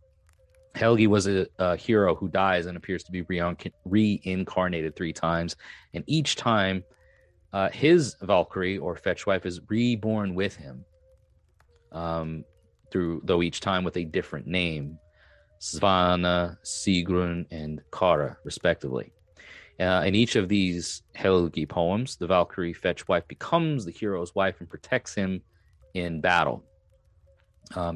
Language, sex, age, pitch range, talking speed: English, male, 30-49, 85-105 Hz, 135 wpm